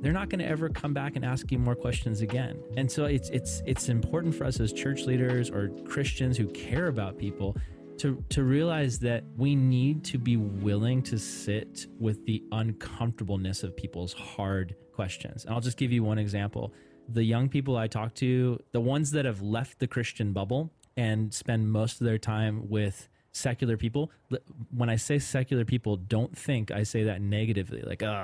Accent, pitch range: American, 105-130 Hz